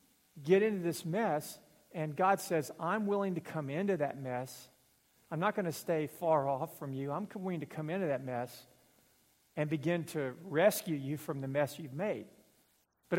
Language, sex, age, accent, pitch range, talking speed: English, male, 50-69, American, 135-175 Hz, 185 wpm